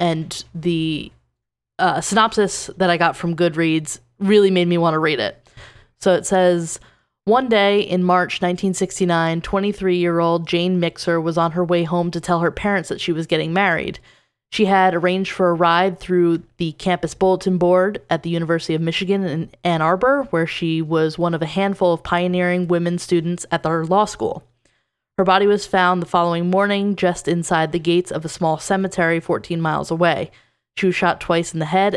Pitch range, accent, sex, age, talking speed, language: 165-185 Hz, American, female, 20-39, 190 wpm, English